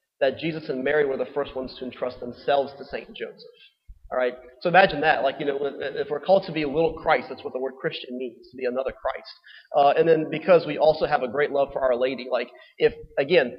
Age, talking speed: 30-49, 245 wpm